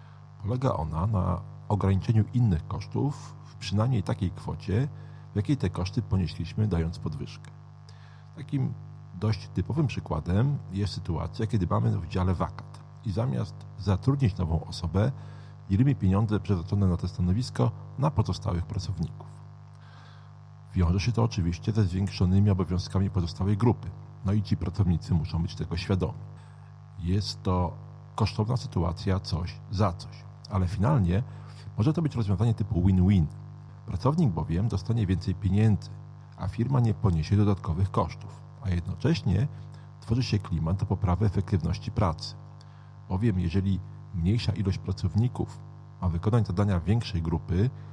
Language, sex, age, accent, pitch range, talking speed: Polish, male, 40-59, native, 95-125 Hz, 130 wpm